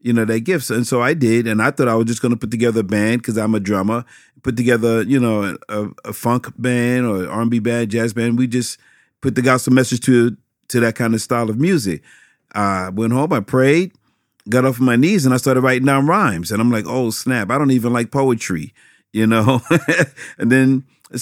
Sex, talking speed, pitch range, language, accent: male, 235 wpm, 110-130 Hz, English, American